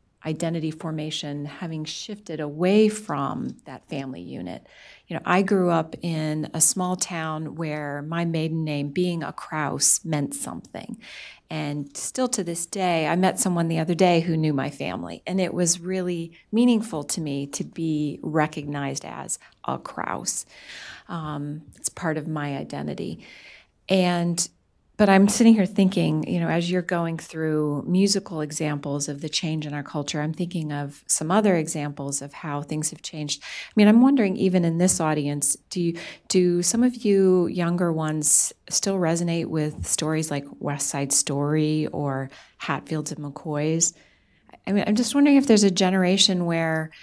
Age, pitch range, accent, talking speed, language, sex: 40-59, 150-180 Hz, American, 165 wpm, English, female